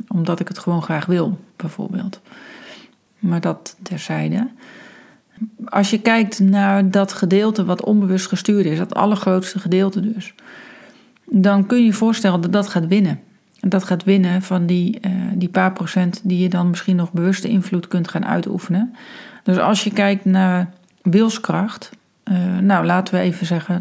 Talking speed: 160 wpm